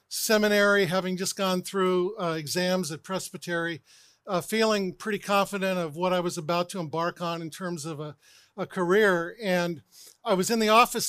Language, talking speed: English, 180 wpm